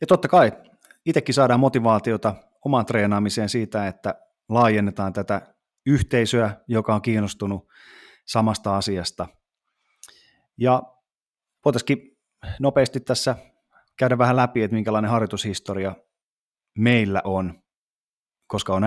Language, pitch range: Finnish, 95-120 Hz